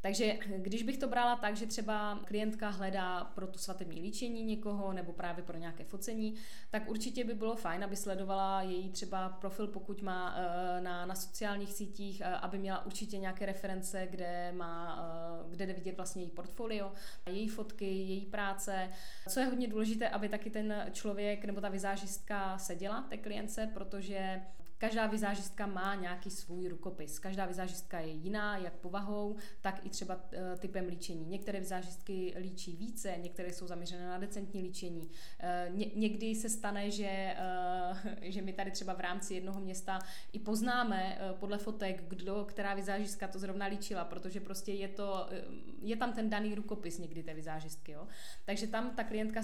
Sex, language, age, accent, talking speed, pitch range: female, Czech, 20-39, native, 165 wpm, 180-210 Hz